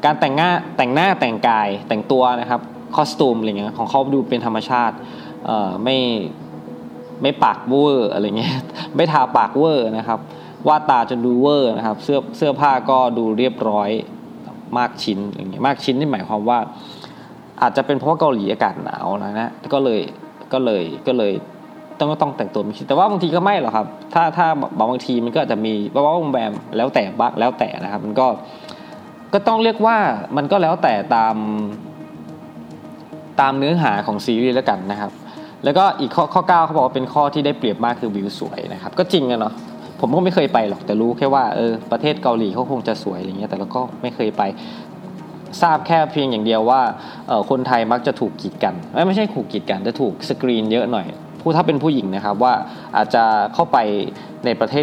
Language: Thai